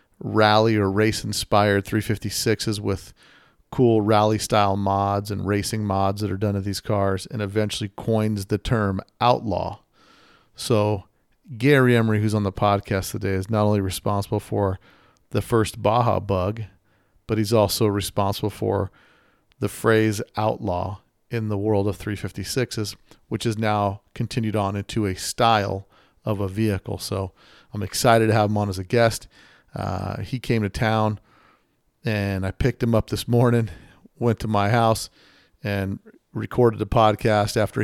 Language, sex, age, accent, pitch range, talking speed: English, male, 40-59, American, 100-115 Hz, 150 wpm